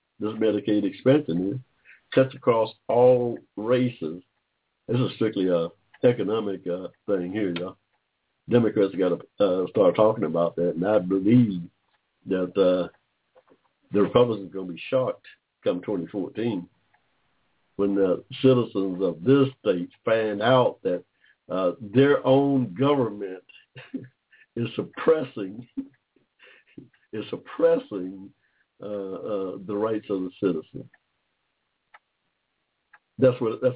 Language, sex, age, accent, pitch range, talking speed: English, male, 60-79, American, 95-125 Hz, 115 wpm